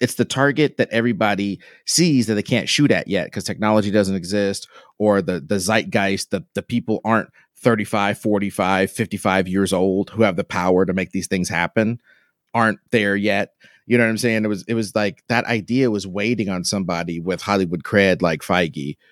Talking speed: 195 wpm